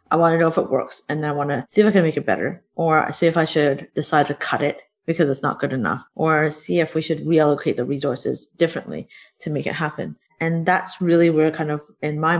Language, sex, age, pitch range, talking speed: English, female, 30-49, 150-175 Hz, 265 wpm